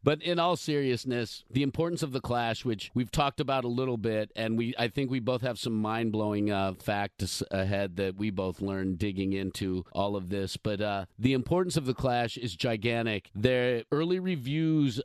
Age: 50-69